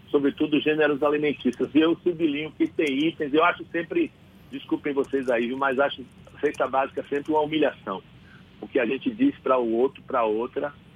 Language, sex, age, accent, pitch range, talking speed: Portuguese, male, 60-79, Brazilian, 125-150 Hz, 195 wpm